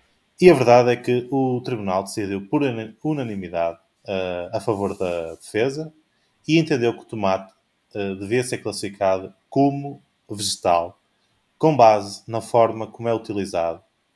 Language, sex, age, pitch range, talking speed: Portuguese, male, 20-39, 100-120 Hz, 140 wpm